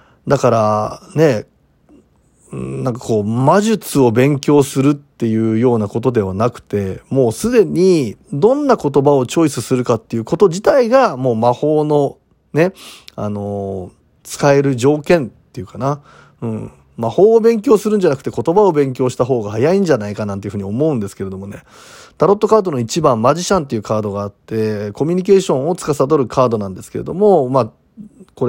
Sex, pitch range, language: male, 115-165 Hz, Japanese